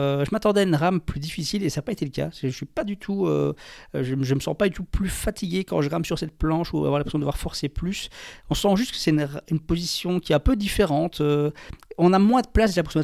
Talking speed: 285 wpm